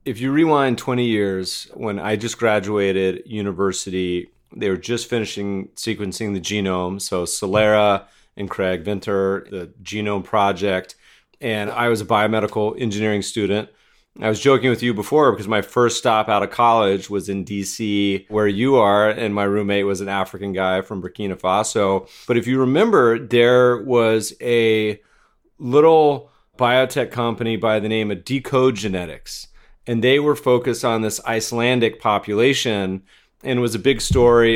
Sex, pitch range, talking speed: male, 100-120 Hz, 160 wpm